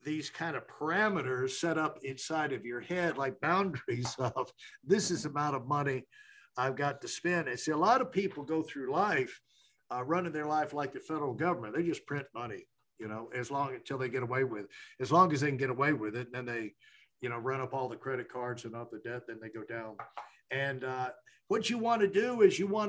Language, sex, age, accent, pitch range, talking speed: English, male, 60-79, American, 130-185 Hz, 240 wpm